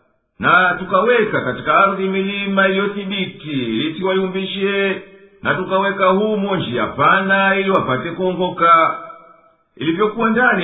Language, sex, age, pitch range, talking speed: English, male, 50-69, 180-200 Hz, 95 wpm